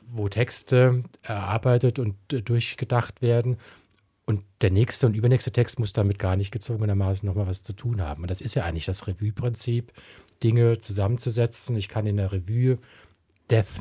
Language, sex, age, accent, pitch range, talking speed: German, male, 40-59, German, 100-120 Hz, 160 wpm